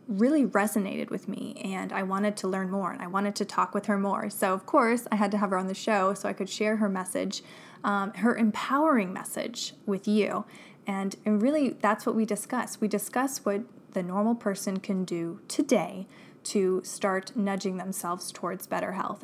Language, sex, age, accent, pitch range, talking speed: English, female, 20-39, American, 190-220 Hz, 200 wpm